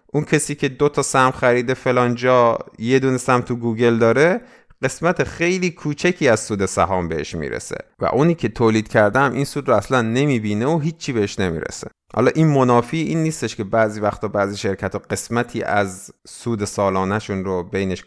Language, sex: Persian, male